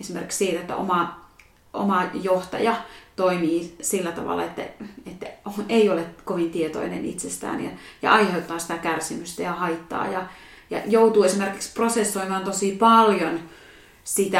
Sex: female